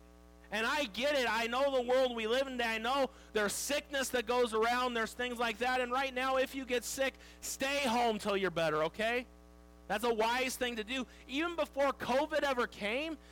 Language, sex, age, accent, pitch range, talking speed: English, male, 40-59, American, 200-260 Hz, 205 wpm